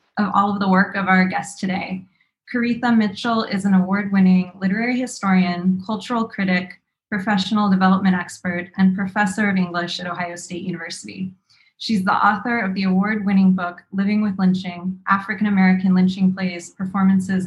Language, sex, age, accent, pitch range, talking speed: English, female, 20-39, American, 185-210 Hz, 150 wpm